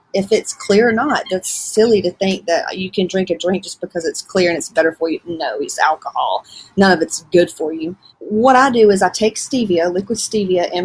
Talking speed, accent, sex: 240 wpm, American, female